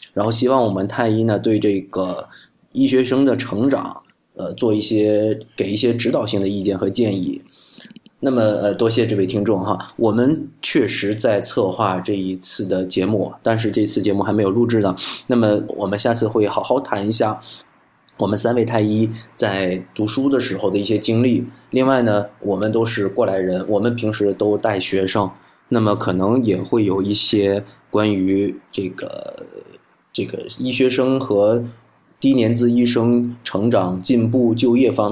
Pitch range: 100-120 Hz